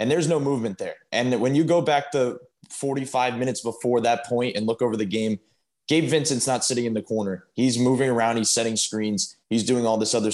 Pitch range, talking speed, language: 110-130 Hz, 225 wpm, English